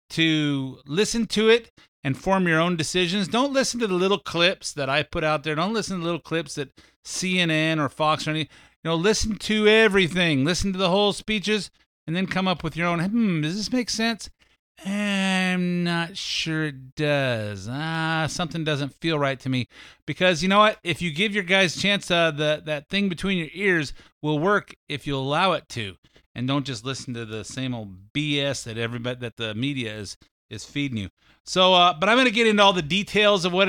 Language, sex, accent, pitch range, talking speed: English, male, American, 135-185 Hz, 210 wpm